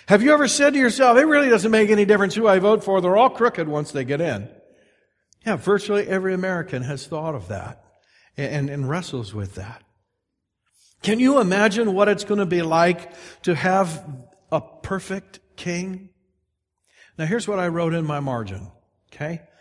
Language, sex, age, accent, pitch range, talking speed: English, male, 60-79, American, 130-195 Hz, 180 wpm